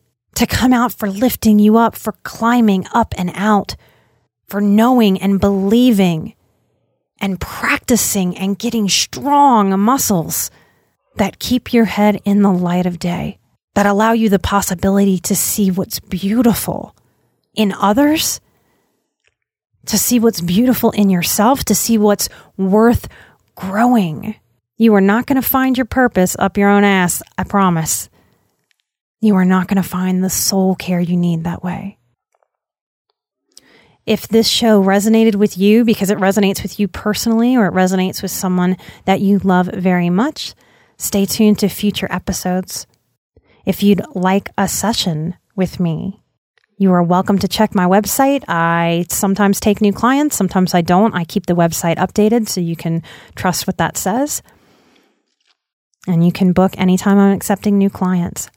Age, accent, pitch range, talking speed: 30-49, American, 185-220 Hz, 155 wpm